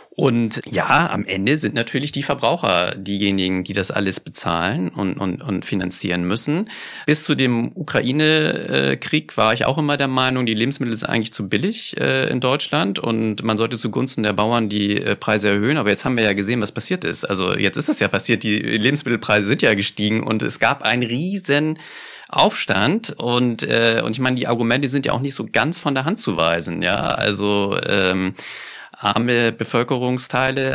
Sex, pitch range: male, 105-135 Hz